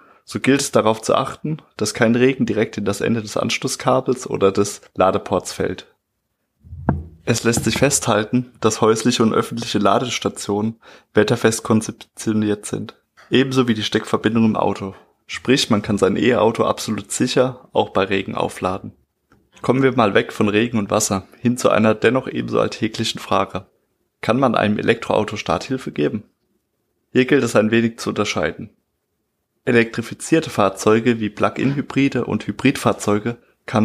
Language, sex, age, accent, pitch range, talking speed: German, male, 20-39, German, 105-120 Hz, 145 wpm